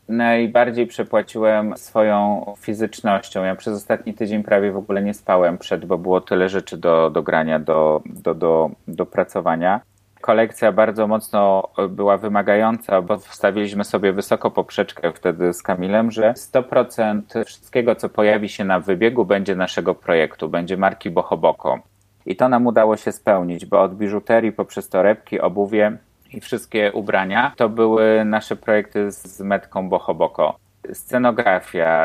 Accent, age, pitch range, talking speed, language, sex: native, 30-49, 95-110 Hz, 140 wpm, Polish, male